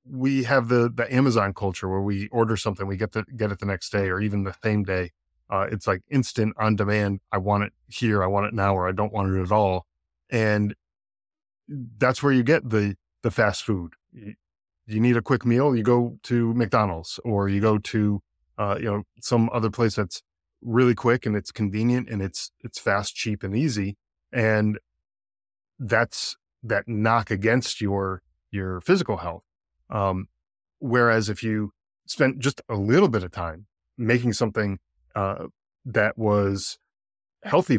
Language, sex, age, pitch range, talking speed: English, male, 20-39, 95-115 Hz, 175 wpm